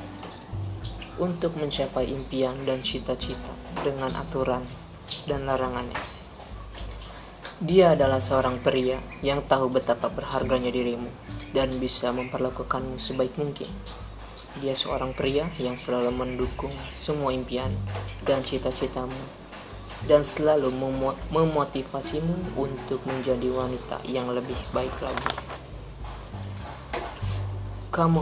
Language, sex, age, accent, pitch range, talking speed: Indonesian, female, 20-39, native, 115-135 Hz, 95 wpm